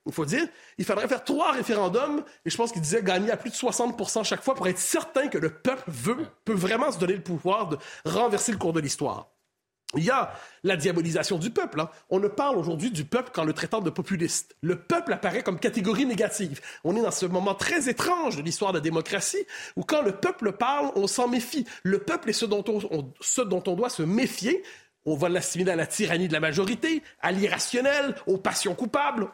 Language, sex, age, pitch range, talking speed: French, male, 30-49, 185-270 Hz, 210 wpm